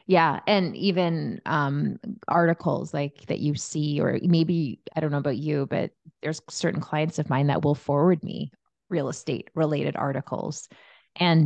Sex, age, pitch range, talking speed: female, 20-39, 145-165 Hz, 160 wpm